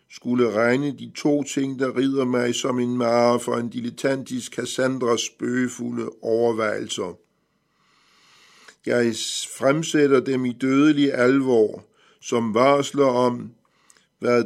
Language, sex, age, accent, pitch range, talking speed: Danish, male, 50-69, native, 120-135 Hz, 110 wpm